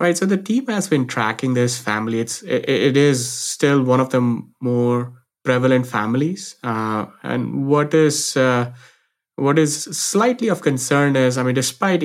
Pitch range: 120-140 Hz